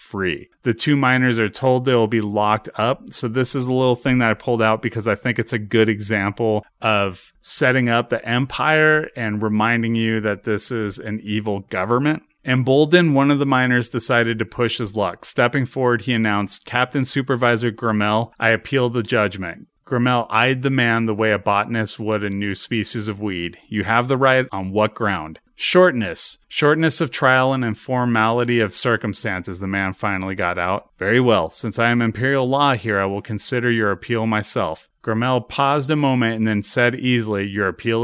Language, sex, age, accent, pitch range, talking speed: English, male, 30-49, American, 105-125 Hz, 190 wpm